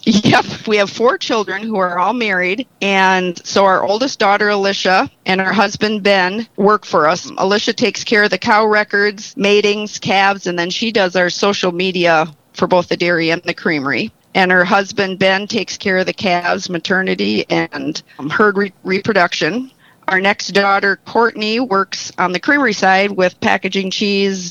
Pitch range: 180-210 Hz